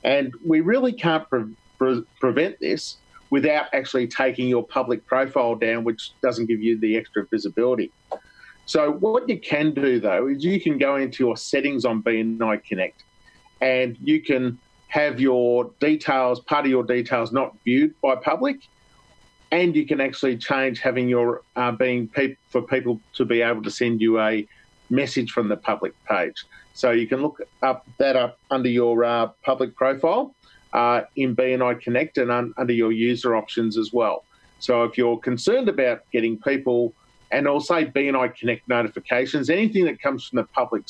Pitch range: 120-145 Hz